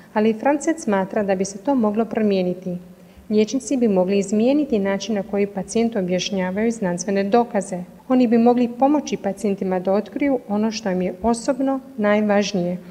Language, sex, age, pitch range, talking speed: Croatian, female, 30-49, 190-245 Hz, 160 wpm